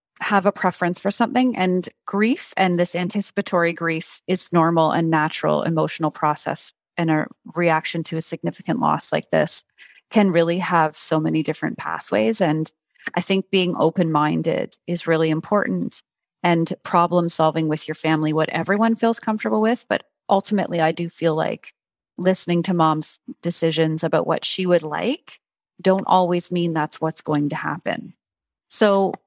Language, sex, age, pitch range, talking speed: English, female, 30-49, 160-190 Hz, 155 wpm